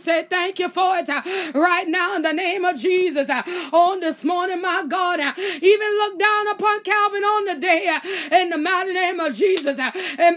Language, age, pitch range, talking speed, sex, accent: English, 30-49, 360-430 Hz, 185 wpm, female, American